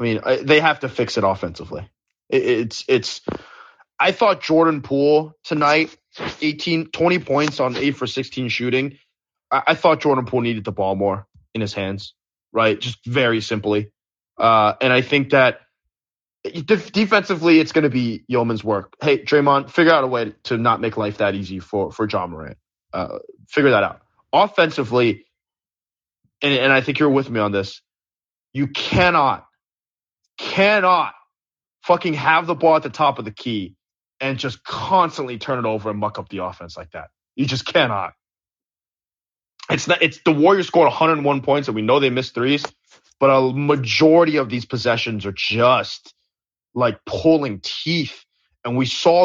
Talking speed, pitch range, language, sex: 170 wpm, 110-150 Hz, English, male